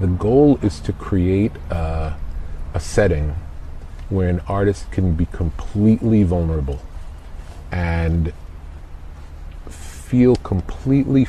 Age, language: 40-59, English